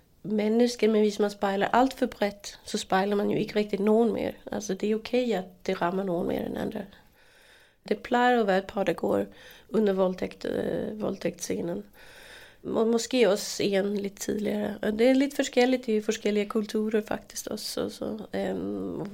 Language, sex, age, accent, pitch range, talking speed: English, female, 30-49, Swedish, 200-235 Hz, 170 wpm